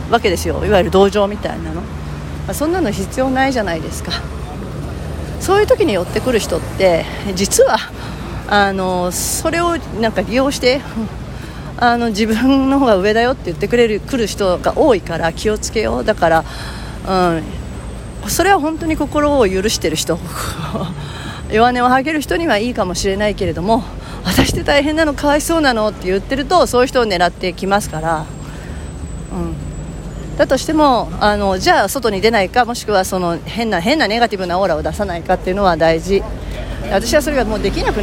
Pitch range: 180-245 Hz